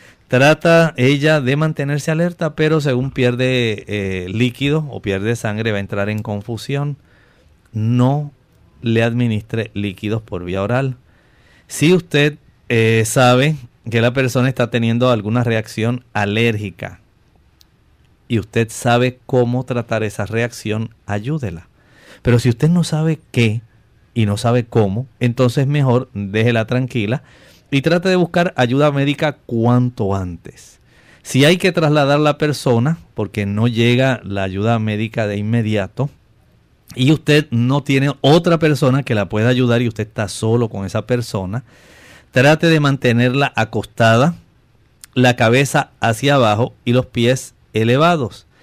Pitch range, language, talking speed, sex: 110-140 Hz, Spanish, 135 wpm, male